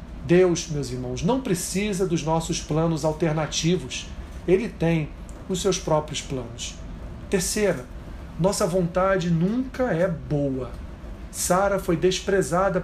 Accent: Brazilian